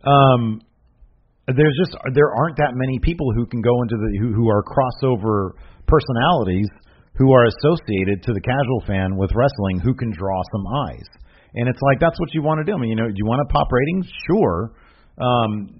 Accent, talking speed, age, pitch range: American, 200 wpm, 40-59, 90-120 Hz